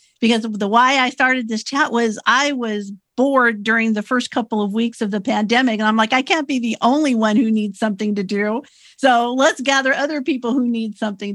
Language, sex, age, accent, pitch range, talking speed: English, female, 50-69, American, 195-245 Hz, 220 wpm